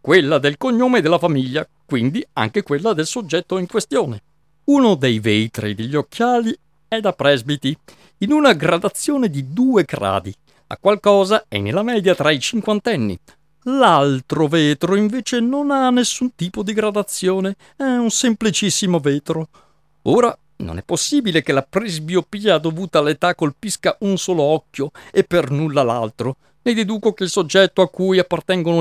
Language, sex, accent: Italian, male, native